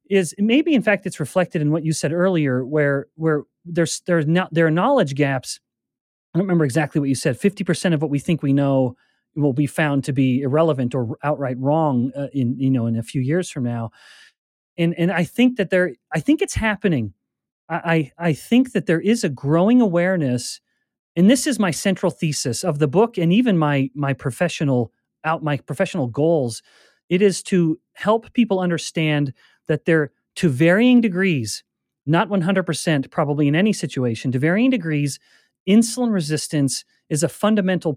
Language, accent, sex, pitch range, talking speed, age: English, American, male, 140-185 Hz, 185 wpm, 30-49